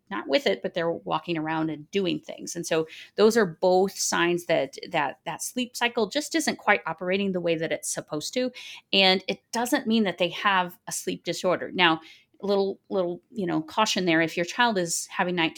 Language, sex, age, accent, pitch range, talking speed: English, female, 30-49, American, 160-210 Hz, 210 wpm